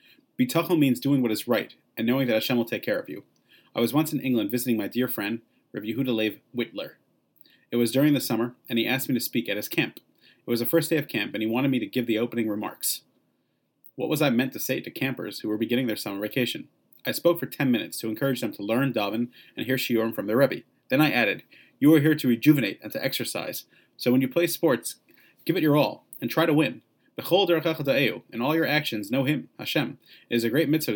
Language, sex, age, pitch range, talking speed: English, male, 30-49, 115-150 Hz, 240 wpm